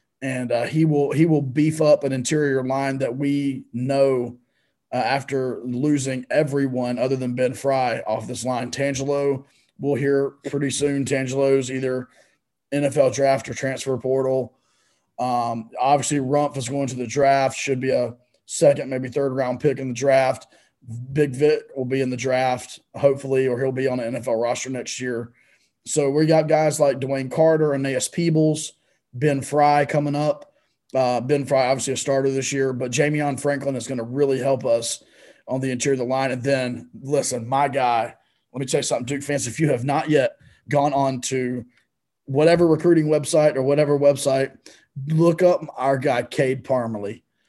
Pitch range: 130-150 Hz